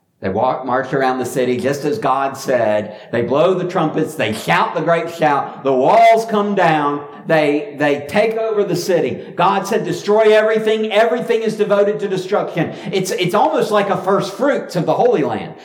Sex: male